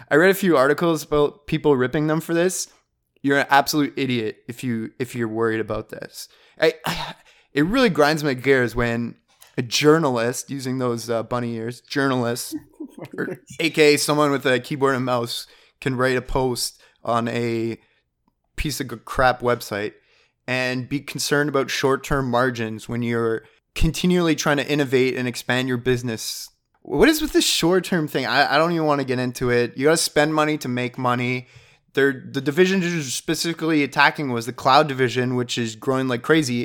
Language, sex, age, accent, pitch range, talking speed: English, male, 20-39, American, 125-150 Hz, 175 wpm